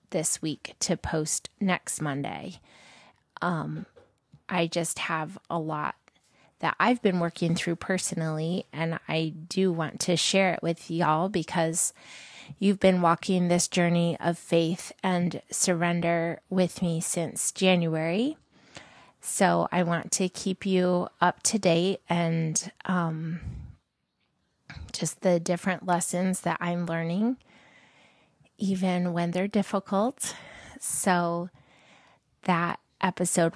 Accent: American